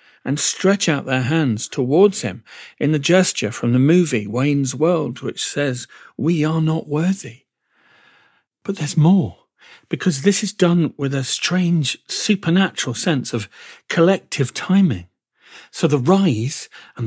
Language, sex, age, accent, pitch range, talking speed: English, male, 40-59, British, 135-190 Hz, 140 wpm